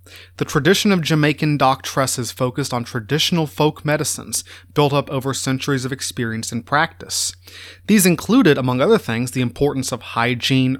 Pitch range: 115-150 Hz